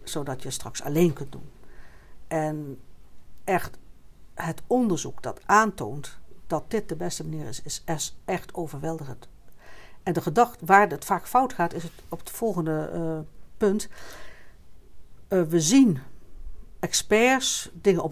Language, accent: Dutch, Dutch